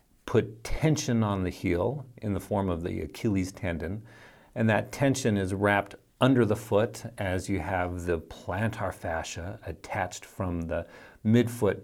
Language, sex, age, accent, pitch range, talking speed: English, male, 40-59, American, 95-120 Hz, 150 wpm